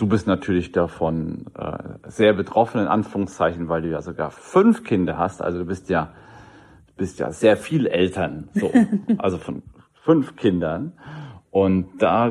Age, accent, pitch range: 40-59, German, 95-130 Hz